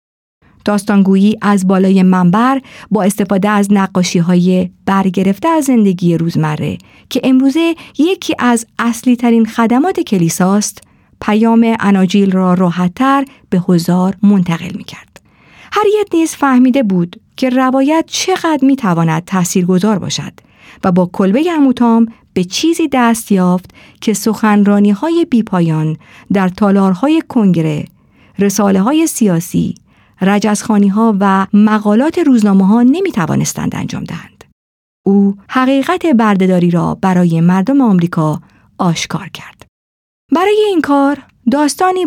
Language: Persian